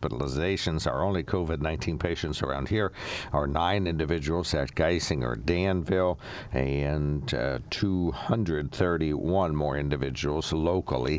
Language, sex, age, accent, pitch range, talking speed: English, male, 60-79, American, 75-95 Hz, 95 wpm